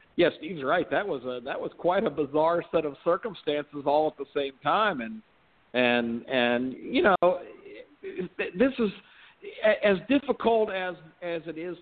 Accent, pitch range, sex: American, 150-190 Hz, male